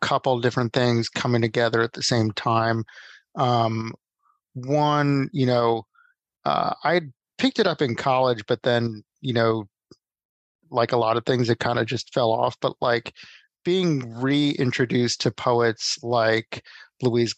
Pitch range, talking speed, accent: 115-135 Hz, 150 wpm, American